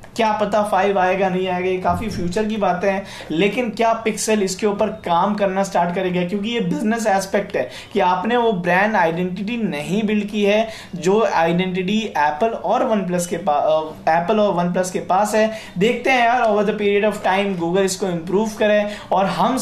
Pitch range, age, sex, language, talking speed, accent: 185-215 Hz, 20-39, male, Hindi, 180 wpm, native